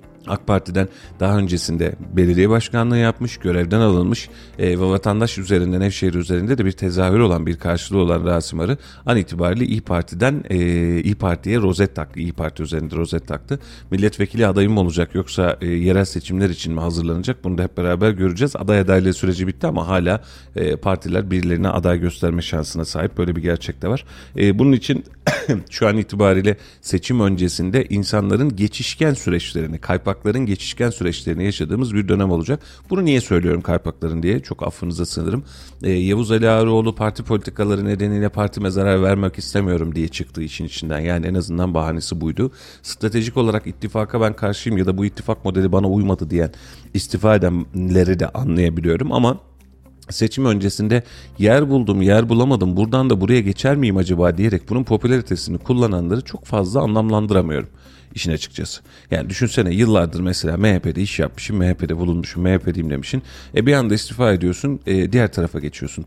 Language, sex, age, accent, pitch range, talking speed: Turkish, male, 40-59, native, 85-110 Hz, 155 wpm